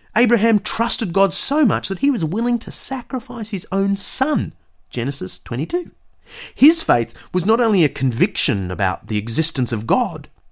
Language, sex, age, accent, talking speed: English, male, 30-49, Australian, 160 wpm